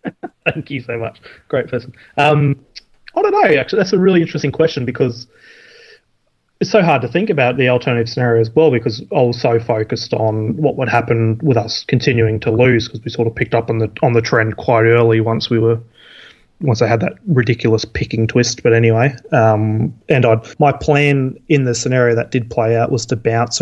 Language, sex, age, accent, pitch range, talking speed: English, male, 20-39, Australian, 115-145 Hz, 210 wpm